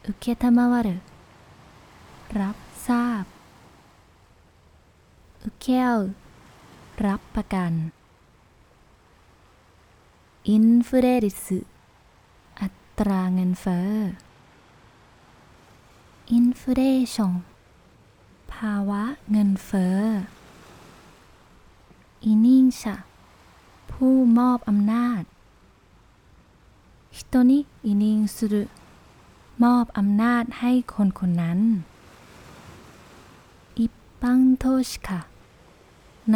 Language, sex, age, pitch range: Thai, female, 20-39, 175-235 Hz